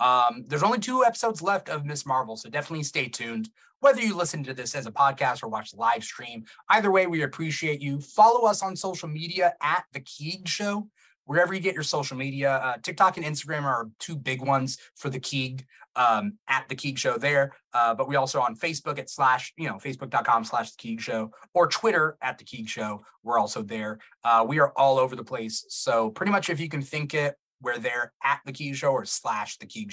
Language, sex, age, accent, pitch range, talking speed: English, male, 30-49, American, 130-175 Hz, 225 wpm